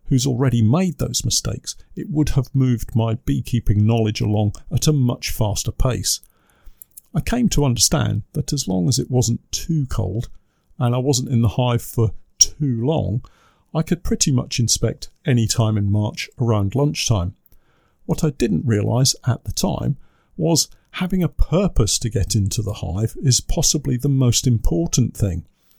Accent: British